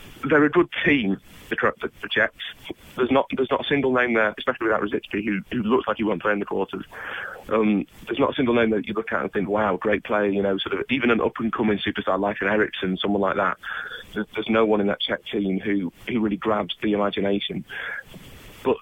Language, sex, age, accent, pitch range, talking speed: English, male, 30-49, British, 100-115 Hz, 240 wpm